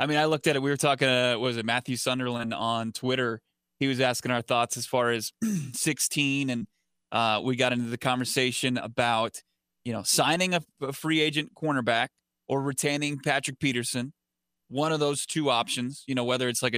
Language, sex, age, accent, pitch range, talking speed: English, male, 20-39, American, 120-140 Hz, 195 wpm